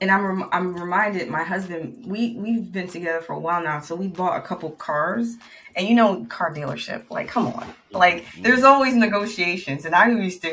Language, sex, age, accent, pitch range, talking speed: English, female, 20-39, American, 165-240 Hz, 210 wpm